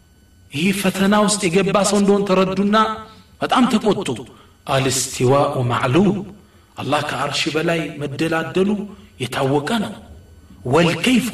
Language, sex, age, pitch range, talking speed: Amharic, male, 40-59, 125-190 Hz, 85 wpm